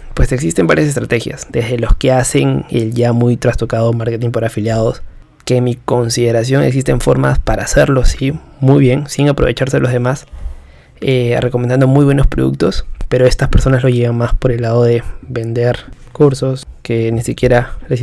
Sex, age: male, 20-39